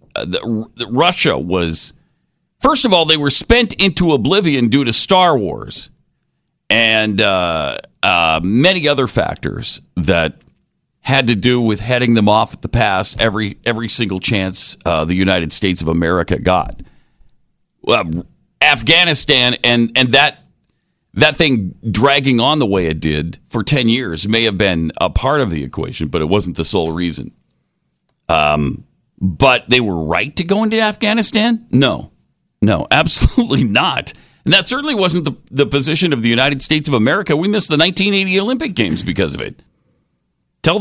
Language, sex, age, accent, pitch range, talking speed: English, male, 50-69, American, 100-155 Hz, 165 wpm